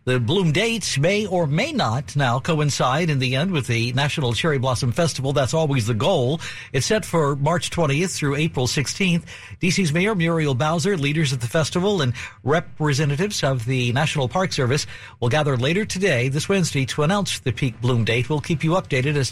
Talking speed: 195 wpm